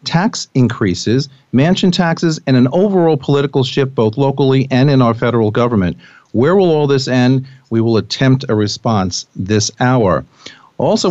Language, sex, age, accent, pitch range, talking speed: English, male, 40-59, American, 115-140 Hz, 155 wpm